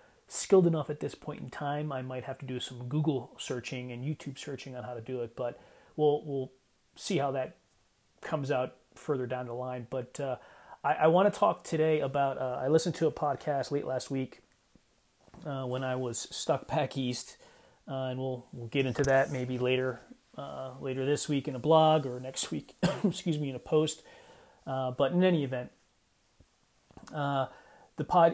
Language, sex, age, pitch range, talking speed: English, male, 30-49, 130-150 Hz, 195 wpm